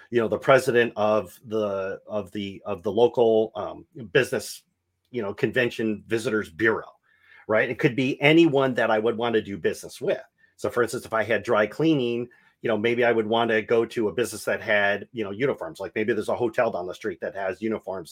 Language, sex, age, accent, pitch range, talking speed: English, male, 40-59, American, 105-130 Hz, 220 wpm